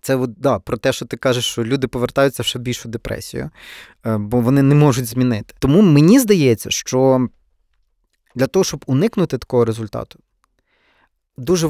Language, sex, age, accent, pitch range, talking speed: Ukrainian, male, 20-39, native, 120-150 Hz, 150 wpm